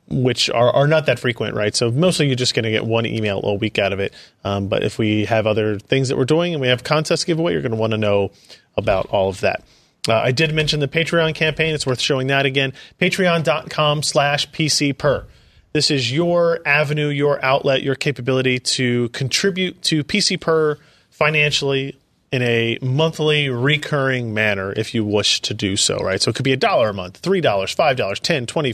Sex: male